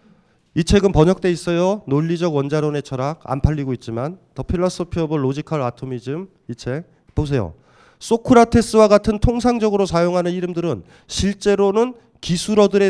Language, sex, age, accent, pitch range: Korean, male, 40-59, native, 160-235 Hz